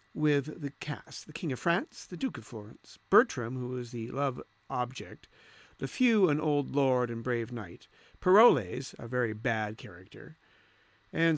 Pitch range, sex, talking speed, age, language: 120-200 Hz, male, 165 wpm, 50-69, English